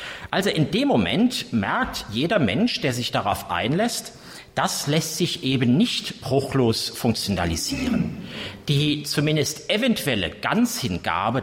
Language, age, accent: German, 50-69, German